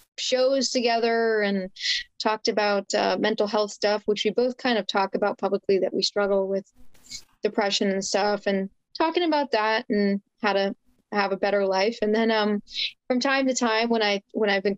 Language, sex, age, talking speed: English, female, 20-39, 190 wpm